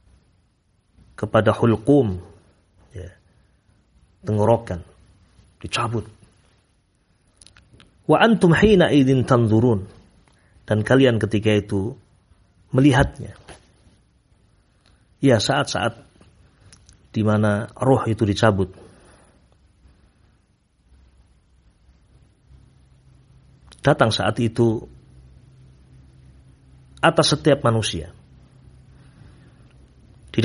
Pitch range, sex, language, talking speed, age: 95-130 Hz, male, Indonesian, 50 wpm, 50-69